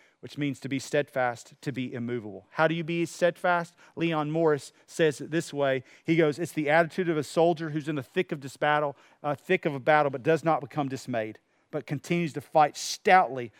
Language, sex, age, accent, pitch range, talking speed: English, male, 40-59, American, 145-200 Hz, 215 wpm